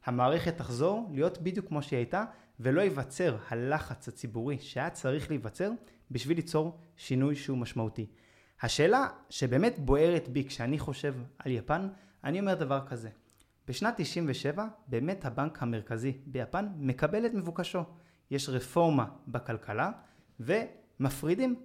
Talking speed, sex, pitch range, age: 120 wpm, male, 130-170 Hz, 20-39